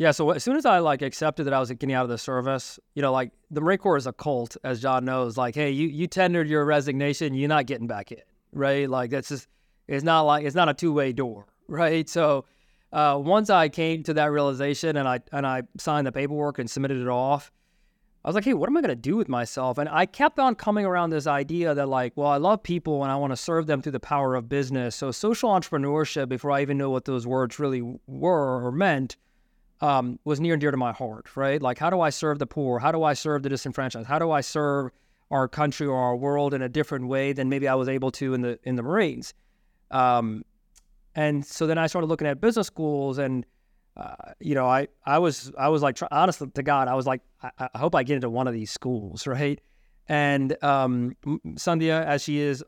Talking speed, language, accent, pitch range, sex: 245 wpm, English, American, 130-155 Hz, male